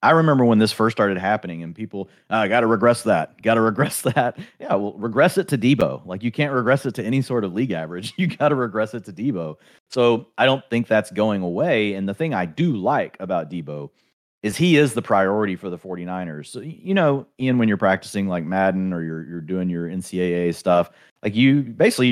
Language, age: English, 30-49